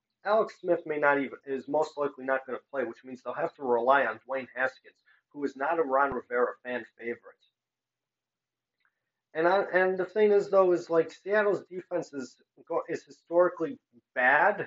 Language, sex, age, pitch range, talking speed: English, male, 40-59, 130-170 Hz, 180 wpm